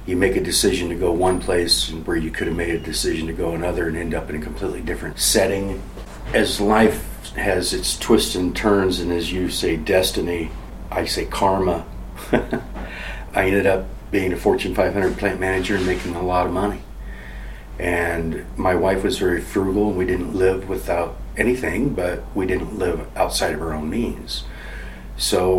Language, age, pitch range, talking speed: English, 40-59, 70-95 Hz, 185 wpm